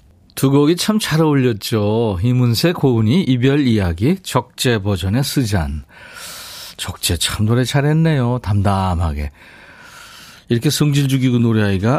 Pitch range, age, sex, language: 100-150 Hz, 40-59, male, Korean